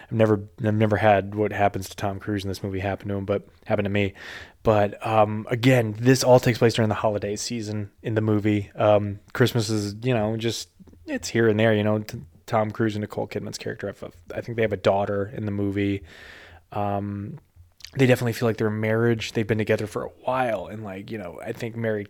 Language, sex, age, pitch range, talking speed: English, male, 20-39, 105-130 Hz, 215 wpm